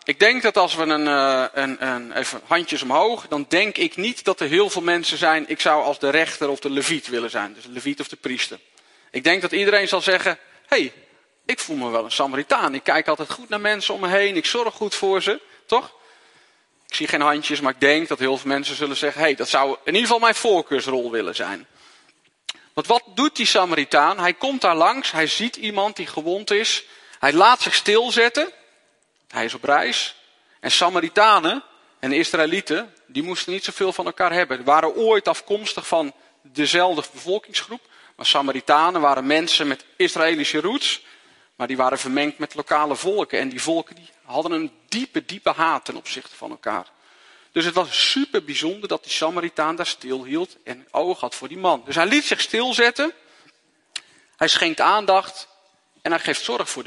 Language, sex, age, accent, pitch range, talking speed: Dutch, male, 40-59, Dutch, 150-220 Hz, 195 wpm